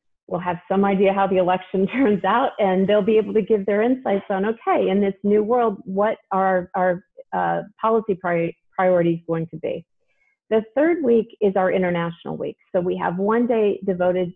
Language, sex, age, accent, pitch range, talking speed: English, female, 40-59, American, 180-220 Hz, 190 wpm